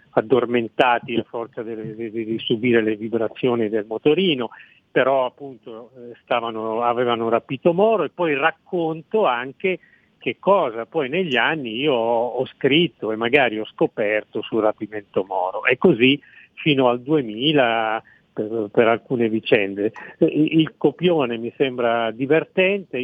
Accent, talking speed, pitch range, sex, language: native, 120 wpm, 115-155 Hz, male, Italian